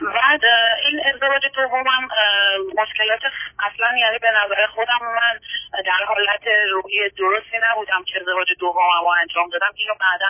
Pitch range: 185-240 Hz